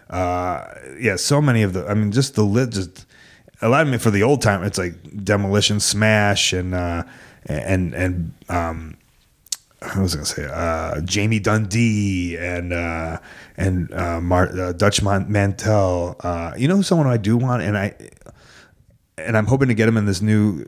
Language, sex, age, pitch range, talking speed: English, male, 30-49, 90-115 Hz, 190 wpm